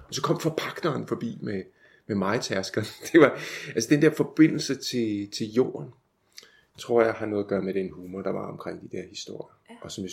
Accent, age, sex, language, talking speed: native, 30-49, male, Danish, 205 wpm